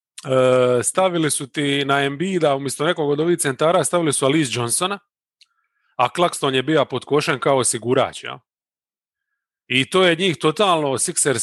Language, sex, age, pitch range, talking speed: English, male, 30-49, 130-175 Hz, 150 wpm